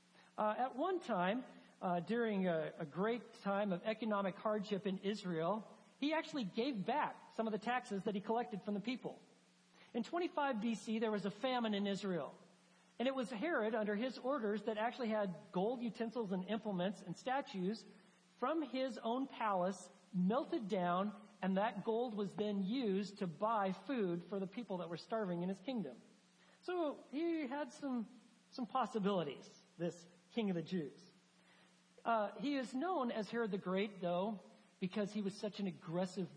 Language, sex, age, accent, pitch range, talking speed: English, male, 40-59, American, 185-225 Hz, 170 wpm